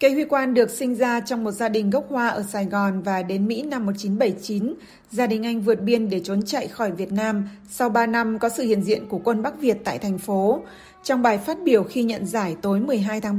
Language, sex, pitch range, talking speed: Vietnamese, female, 205-240 Hz, 245 wpm